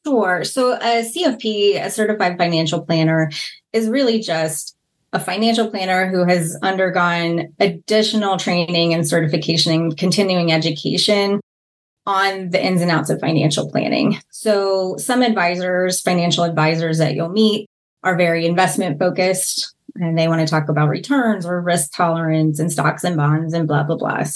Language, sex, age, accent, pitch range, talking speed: English, female, 20-39, American, 165-200 Hz, 155 wpm